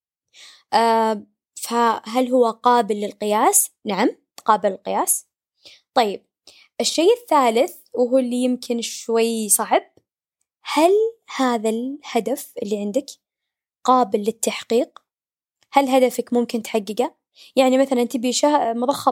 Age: 20-39